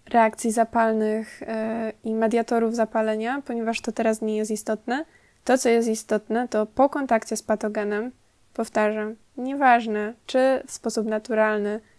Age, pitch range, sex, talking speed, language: 20-39, 210-235 Hz, female, 135 wpm, Polish